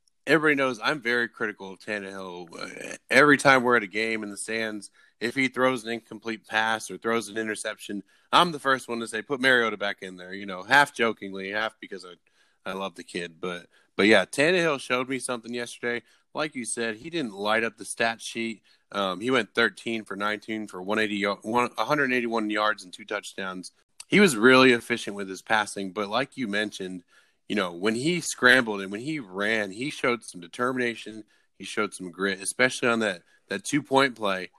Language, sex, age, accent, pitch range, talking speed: English, male, 20-39, American, 100-125 Hz, 200 wpm